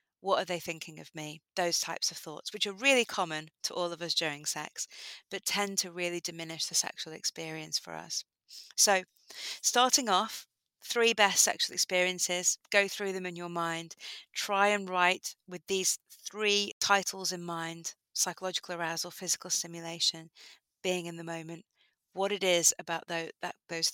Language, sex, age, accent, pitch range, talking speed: English, female, 30-49, British, 165-195 Hz, 165 wpm